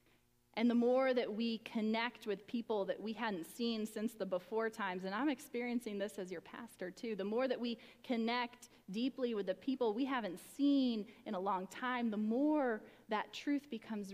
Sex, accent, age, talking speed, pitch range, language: female, American, 30-49, 190 wpm, 185-240 Hz, English